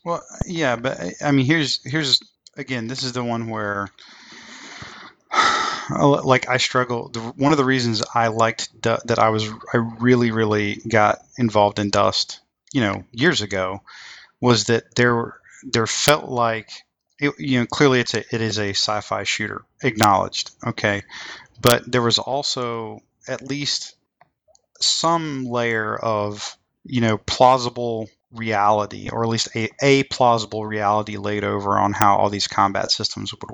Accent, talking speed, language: American, 150 wpm, English